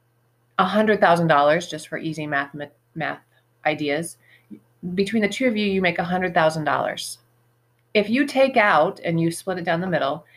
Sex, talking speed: female, 150 wpm